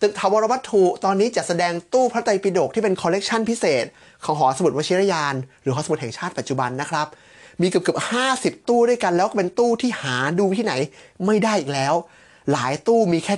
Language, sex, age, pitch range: Thai, male, 20-39, 150-195 Hz